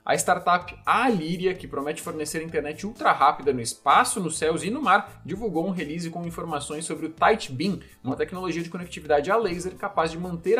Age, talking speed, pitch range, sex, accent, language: 20-39, 190 wpm, 155-210 Hz, male, Brazilian, Portuguese